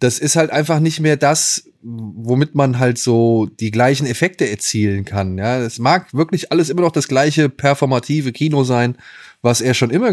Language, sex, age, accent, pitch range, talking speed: German, male, 20-39, German, 110-135 Hz, 190 wpm